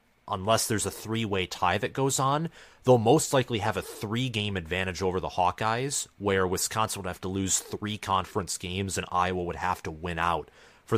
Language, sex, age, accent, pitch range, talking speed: English, male, 30-49, American, 90-115 Hz, 190 wpm